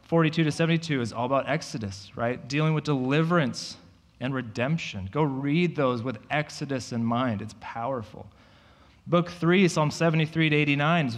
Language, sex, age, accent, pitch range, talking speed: English, male, 30-49, American, 110-145 Hz, 155 wpm